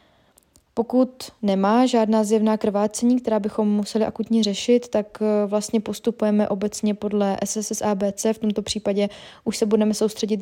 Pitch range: 205-225 Hz